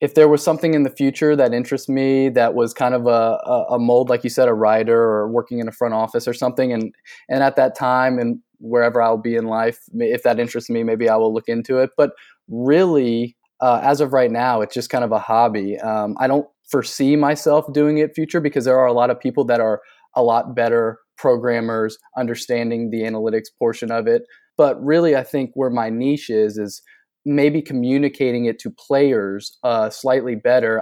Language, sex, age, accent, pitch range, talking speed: English, male, 20-39, American, 115-145 Hz, 210 wpm